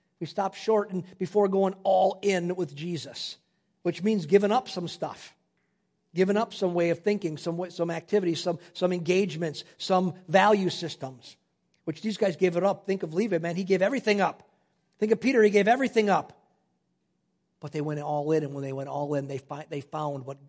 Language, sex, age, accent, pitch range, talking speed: English, male, 50-69, American, 145-190 Hz, 200 wpm